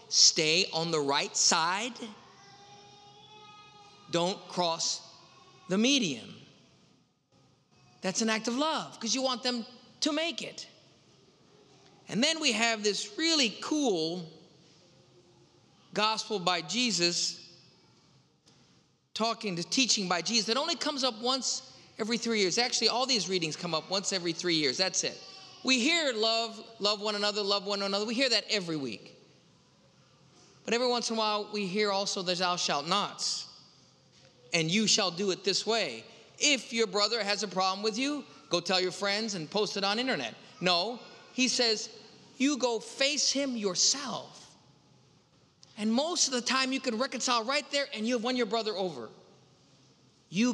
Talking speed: 160 wpm